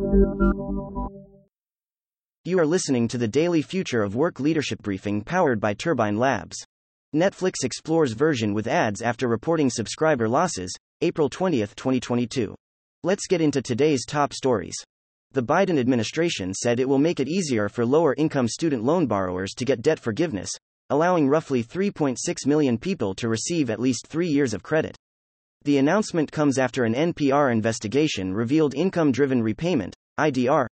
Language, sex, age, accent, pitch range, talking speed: English, male, 30-49, American, 110-160 Hz, 145 wpm